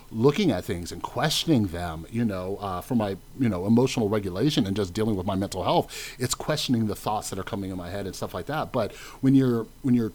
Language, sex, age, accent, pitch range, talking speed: English, male, 40-59, American, 95-120 Hz, 240 wpm